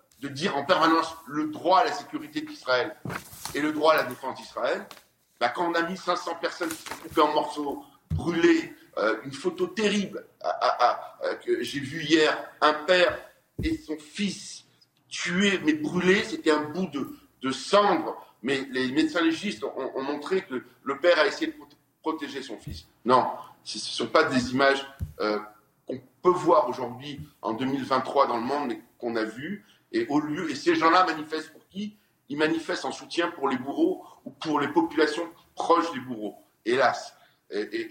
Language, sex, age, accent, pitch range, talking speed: French, male, 50-69, French, 135-205 Hz, 175 wpm